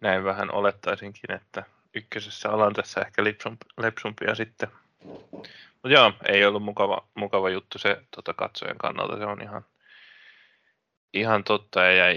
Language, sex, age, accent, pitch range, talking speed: Finnish, male, 20-39, native, 100-115 Hz, 140 wpm